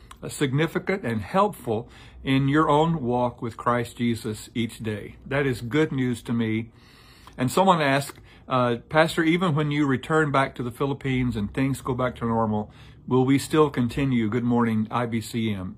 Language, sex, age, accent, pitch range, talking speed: English, male, 50-69, American, 115-145 Hz, 165 wpm